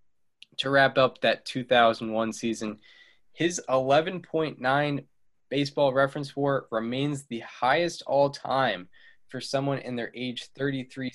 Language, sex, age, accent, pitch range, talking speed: English, male, 20-39, American, 115-140 Hz, 115 wpm